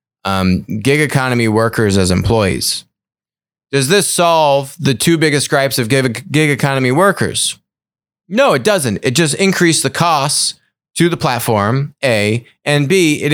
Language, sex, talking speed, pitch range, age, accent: English, male, 145 wpm, 110-150 Hz, 30-49, American